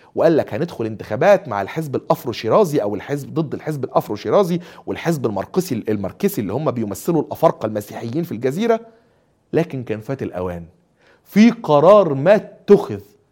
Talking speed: 135 wpm